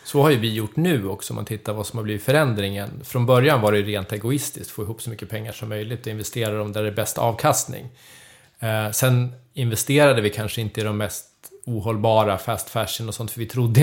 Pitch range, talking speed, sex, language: 110-130 Hz, 235 wpm, male, Swedish